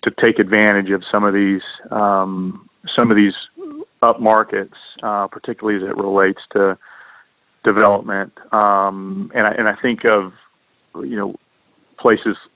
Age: 40-59